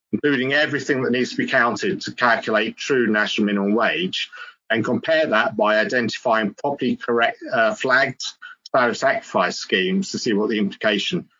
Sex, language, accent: male, English, British